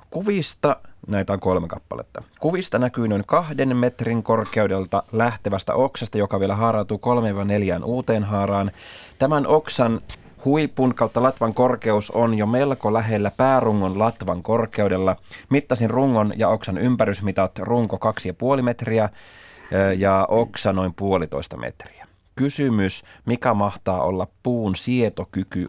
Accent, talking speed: native, 125 wpm